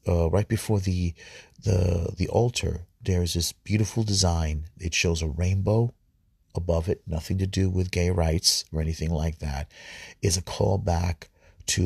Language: English